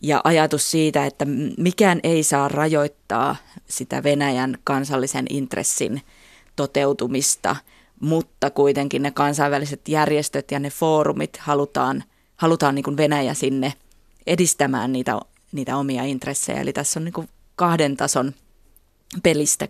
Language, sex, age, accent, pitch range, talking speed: Finnish, female, 20-39, native, 140-160 Hz, 110 wpm